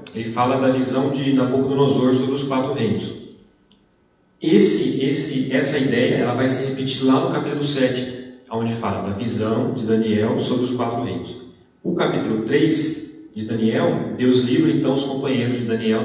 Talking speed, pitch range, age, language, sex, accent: 165 wpm, 115-135 Hz, 40-59, Portuguese, male, Brazilian